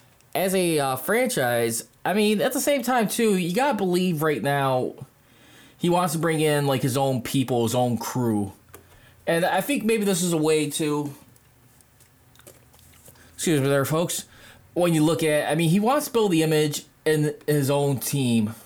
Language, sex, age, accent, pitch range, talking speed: English, male, 20-39, American, 125-160 Hz, 185 wpm